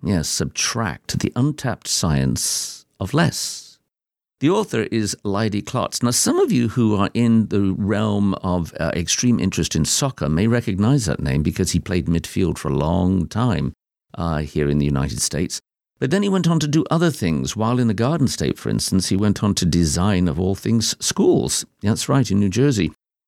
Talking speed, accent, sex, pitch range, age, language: 195 wpm, British, male, 85-120 Hz, 50-69, English